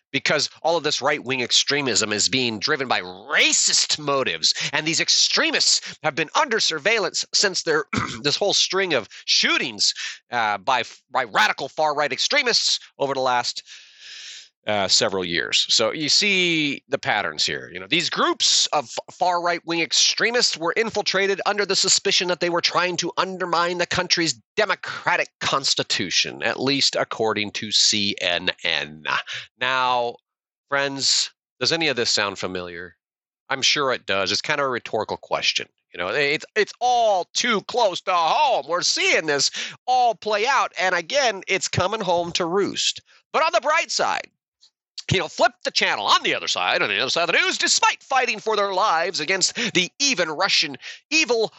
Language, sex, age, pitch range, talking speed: English, male, 30-49, 145-235 Hz, 170 wpm